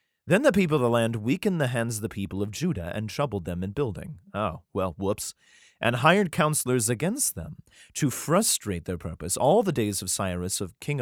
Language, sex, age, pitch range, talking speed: English, male, 30-49, 95-145 Hz, 205 wpm